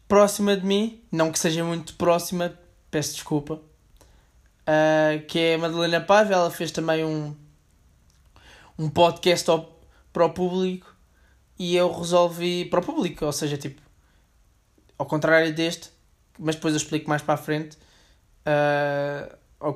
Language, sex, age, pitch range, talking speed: Portuguese, male, 20-39, 140-175 Hz, 135 wpm